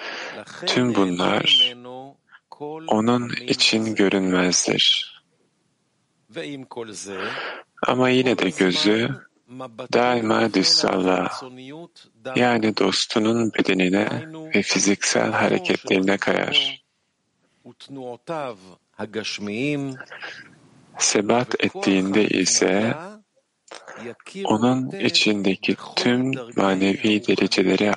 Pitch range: 100-130 Hz